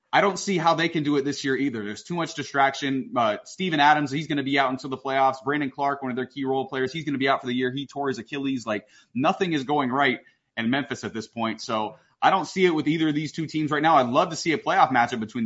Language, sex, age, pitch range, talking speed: English, male, 30-49, 130-170 Hz, 300 wpm